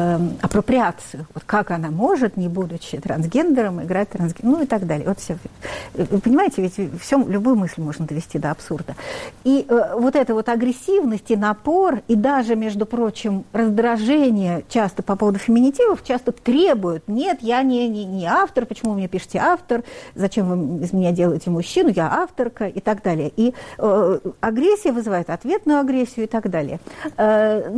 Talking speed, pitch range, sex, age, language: 165 wpm, 195-265 Hz, female, 60-79, Russian